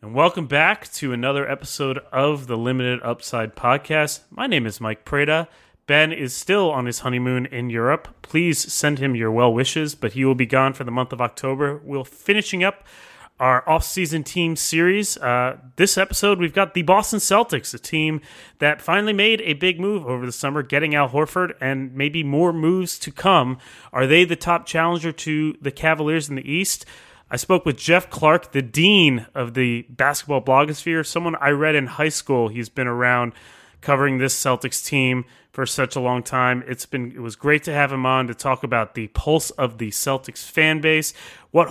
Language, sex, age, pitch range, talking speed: English, male, 30-49, 125-165 Hz, 195 wpm